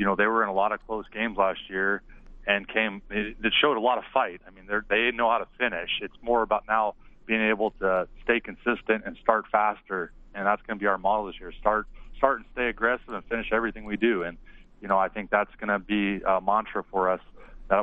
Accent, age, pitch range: American, 30-49, 100-115 Hz